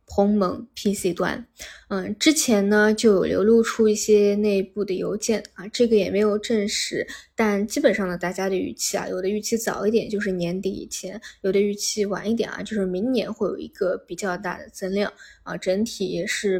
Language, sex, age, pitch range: Chinese, female, 20-39, 195-220 Hz